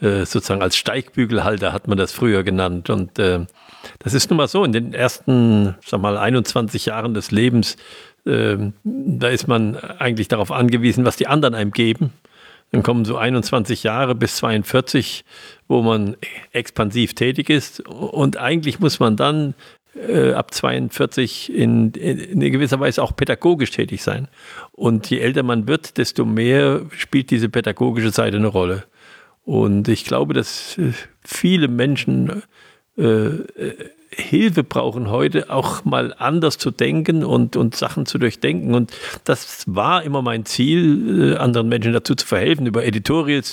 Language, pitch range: German, 105-135 Hz